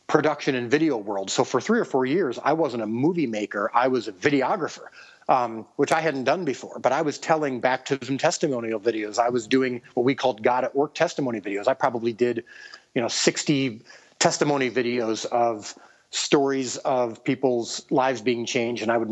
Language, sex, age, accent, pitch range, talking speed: English, male, 40-59, American, 120-135 Hz, 200 wpm